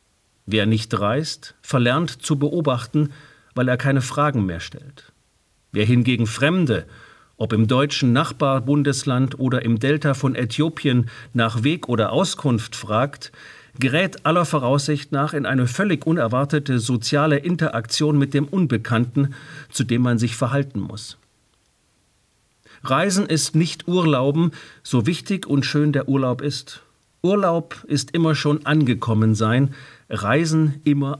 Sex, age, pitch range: male, 50-69, 115-150 Hz